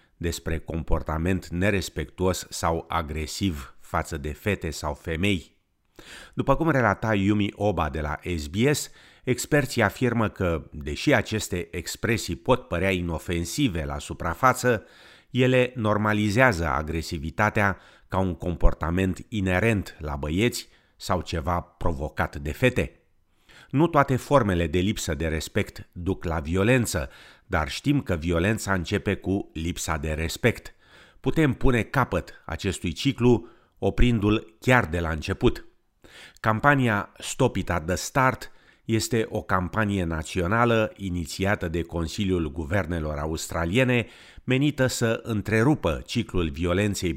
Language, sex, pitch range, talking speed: Romanian, male, 85-110 Hz, 115 wpm